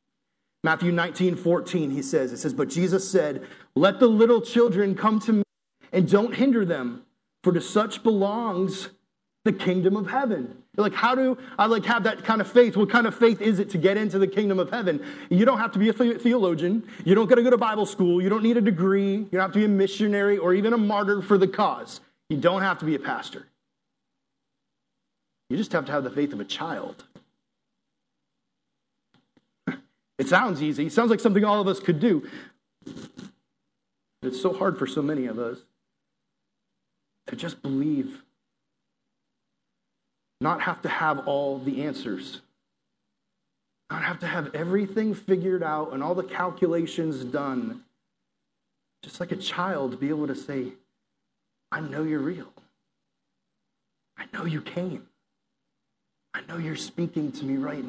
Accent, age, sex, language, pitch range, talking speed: American, 30-49, male, English, 170-220 Hz, 175 wpm